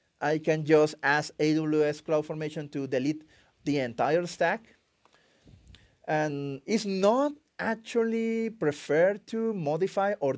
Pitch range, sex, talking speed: 140-190 Hz, male, 110 wpm